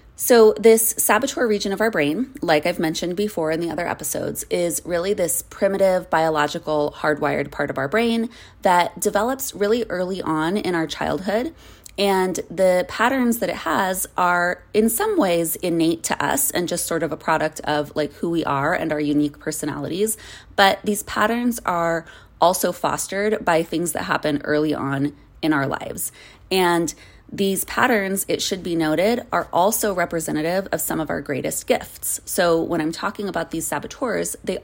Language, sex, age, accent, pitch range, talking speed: English, female, 20-39, American, 155-200 Hz, 175 wpm